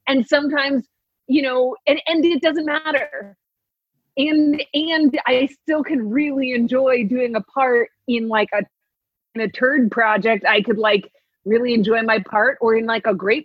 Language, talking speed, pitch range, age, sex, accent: English, 170 wpm, 205-260 Hz, 30-49, female, American